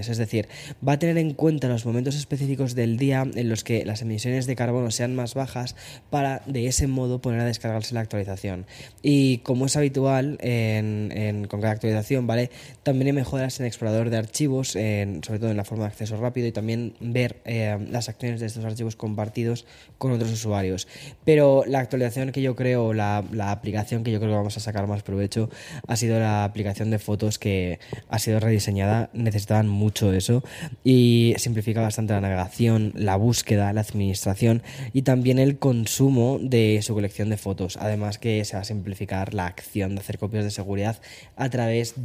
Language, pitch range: Spanish, 105-130 Hz